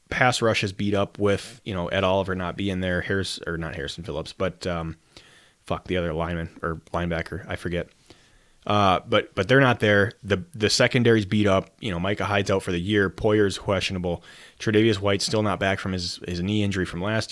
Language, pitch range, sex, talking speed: English, 85-105 Hz, male, 210 wpm